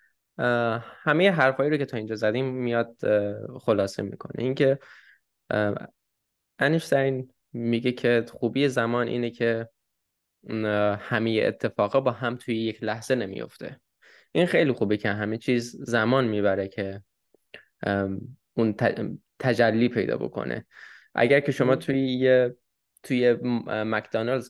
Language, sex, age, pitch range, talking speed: Persian, male, 10-29, 105-125 Hz, 115 wpm